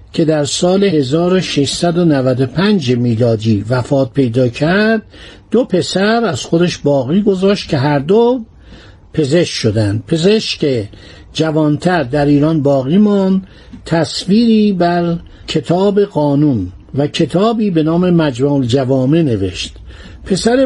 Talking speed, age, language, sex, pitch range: 105 wpm, 60-79, Persian, male, 130-180 Hz